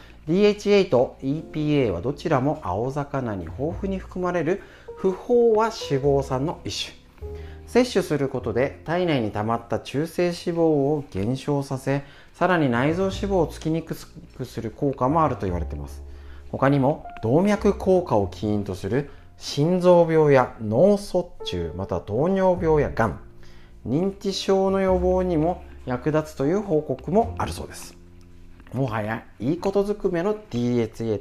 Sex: male